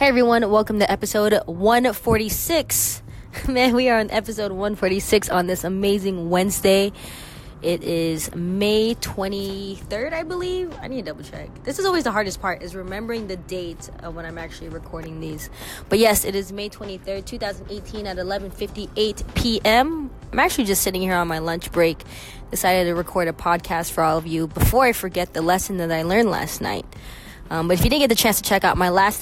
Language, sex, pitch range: English, female, 165-210 Hz